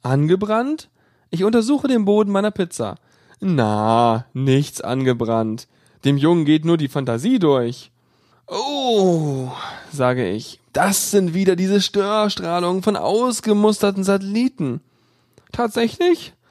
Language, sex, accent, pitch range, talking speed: German, male, German, 135-220 Hz, 105 wpm